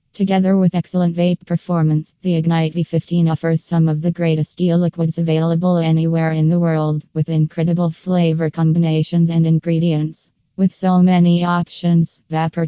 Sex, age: female, 20-39